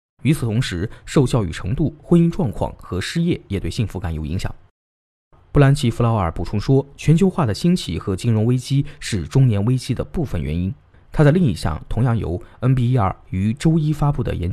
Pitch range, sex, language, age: 95-145 Hz, male, Chinese, 20-39